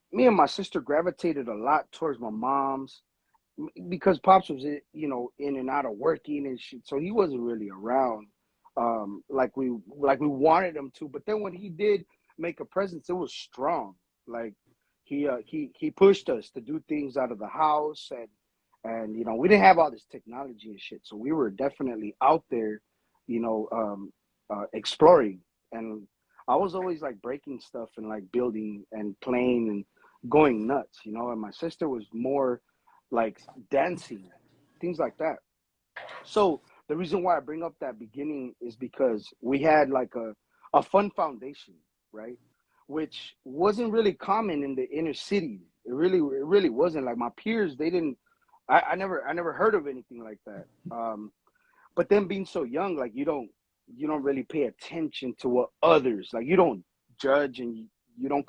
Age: 30-49